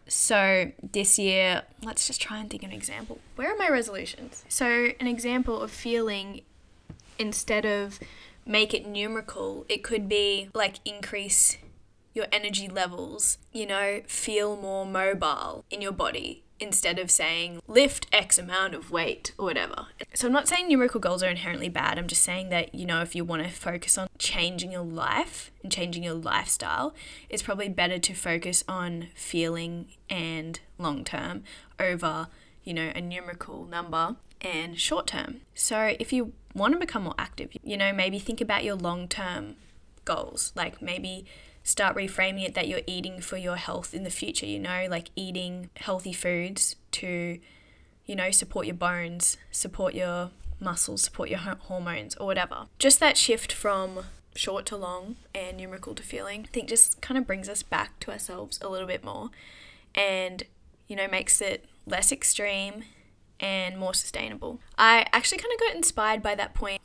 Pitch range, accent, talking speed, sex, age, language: 180-215 Hz, Australian, 170 wpm, female, 10-29, English